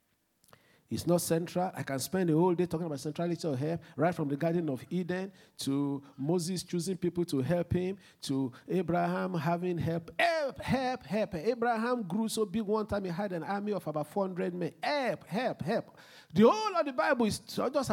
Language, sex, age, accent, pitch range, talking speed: English, male, 50-69, Nigerian, 155-240 Hz, 195 wpm